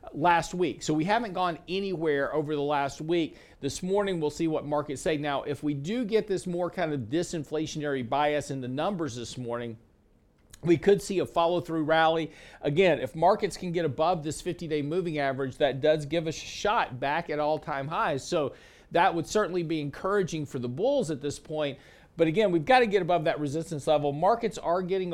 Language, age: English, 50-69